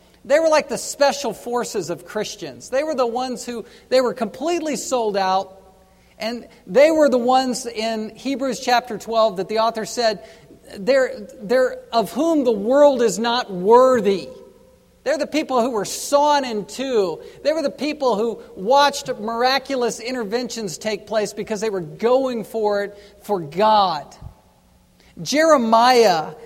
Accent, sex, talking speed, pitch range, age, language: American, male, 150 wpm, 210-265 Hz, 50-69, English